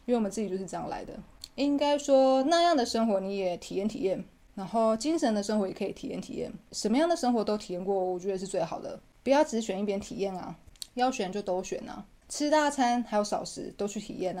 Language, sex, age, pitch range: Chinese, female, 20-39, 190-235 Hz